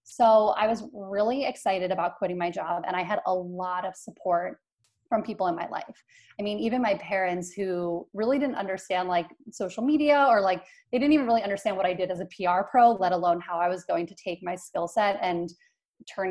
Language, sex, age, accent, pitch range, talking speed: English, female, 20-39, American, 185-230 Hz, 220 wpm